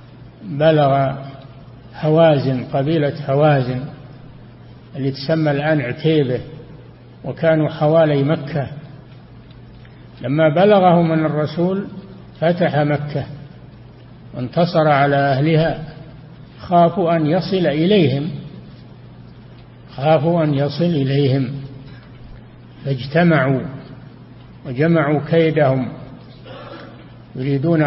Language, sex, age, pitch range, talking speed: Arabic, male, 60-79, 135-155 Hz, 70 wpm